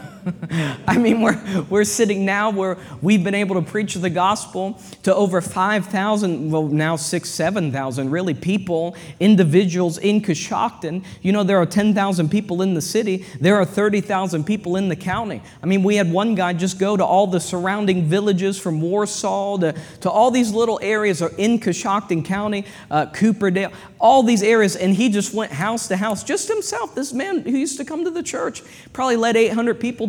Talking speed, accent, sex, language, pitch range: 190 wpm, American, male, English, 175-220 Hz